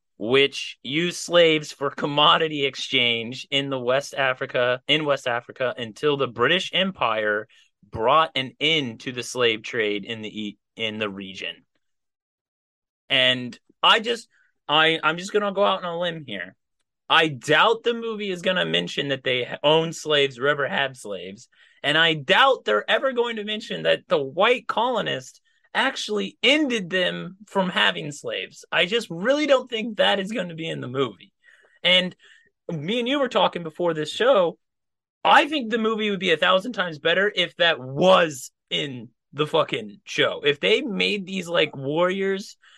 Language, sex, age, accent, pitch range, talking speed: English, male, 30-49, American, 135-195 Hz, 170 wpm